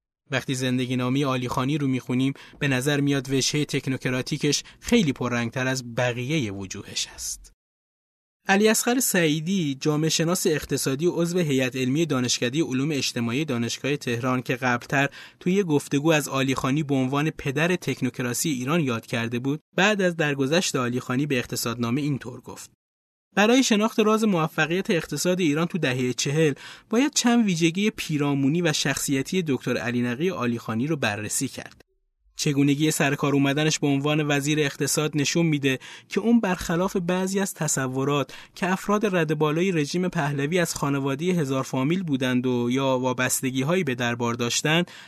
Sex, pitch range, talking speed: male, 125-165 Hz, 145 wpm